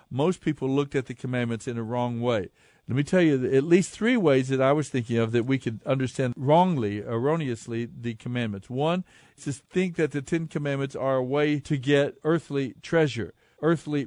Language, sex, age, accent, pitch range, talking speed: English, male, 50-69, American, 125-155 Hz, 200 wpm